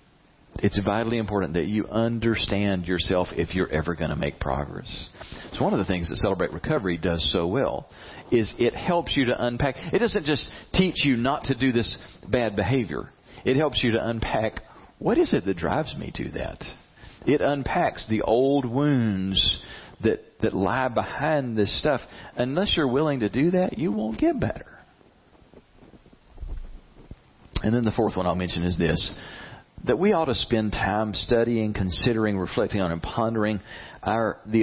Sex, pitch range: male, 95-125 Hz